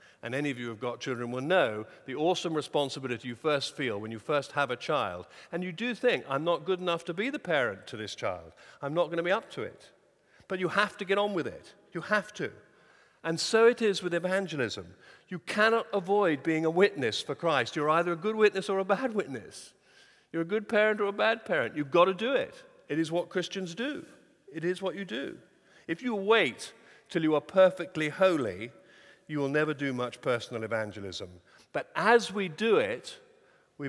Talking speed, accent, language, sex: 220 wpm, British, English, male